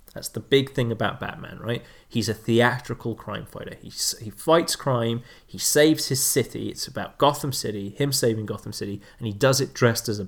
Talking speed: 205 wpm